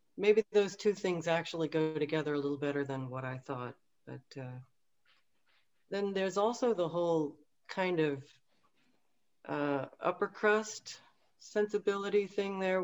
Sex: female